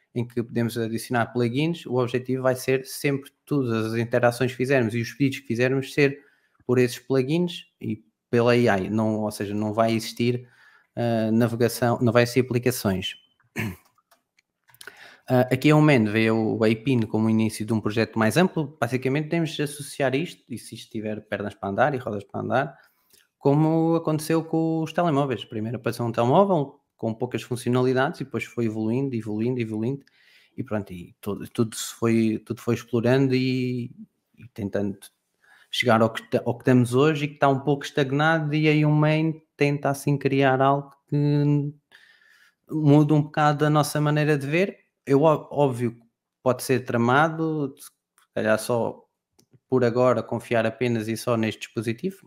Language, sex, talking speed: Portuguese, male, 170 wpm